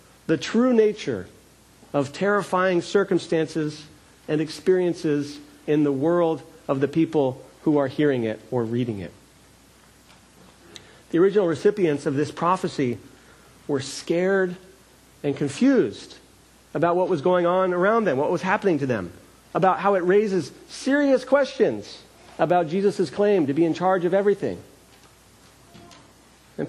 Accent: American